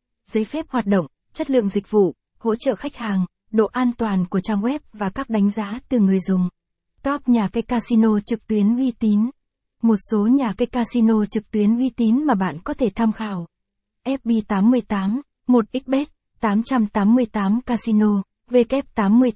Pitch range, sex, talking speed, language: 205-240 Hz, female, 165 wpm, Vietnamese